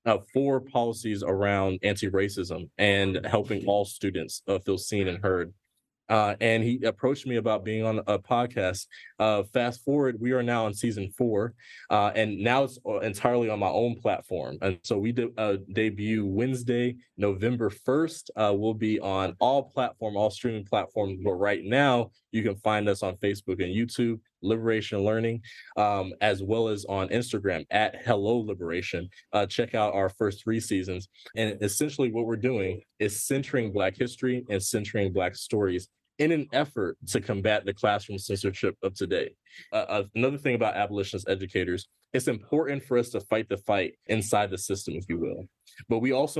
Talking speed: 175 wpm